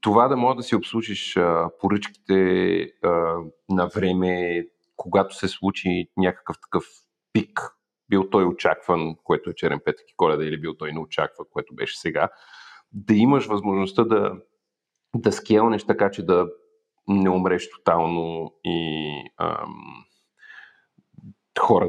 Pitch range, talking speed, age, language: 85-110 Hz, 130 wpm, 40-59, Bulgarian